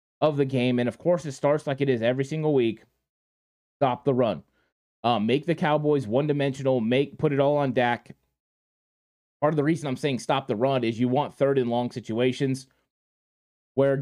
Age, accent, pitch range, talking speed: 20-39, American, 120-155 Hz, 195 wpm